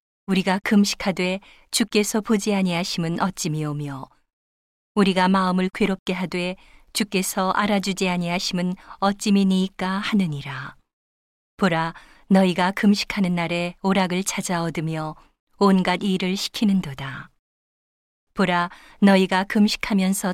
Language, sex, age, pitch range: Korean, female, 40-59, 170-200 Hz